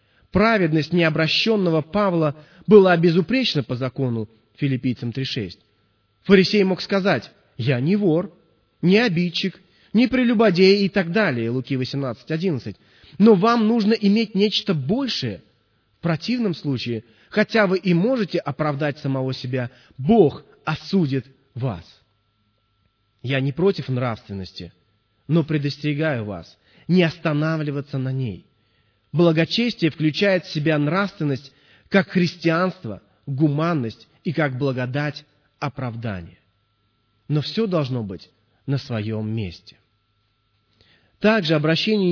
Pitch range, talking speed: 115-175 Hz, 105 wpm